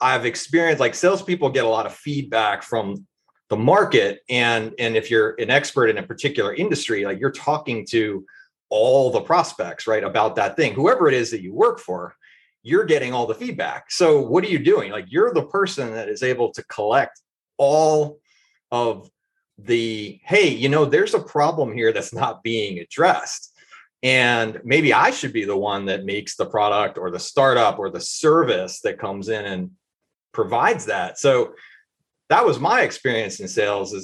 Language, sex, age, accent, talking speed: English, male, 30-49, American, 185 wpm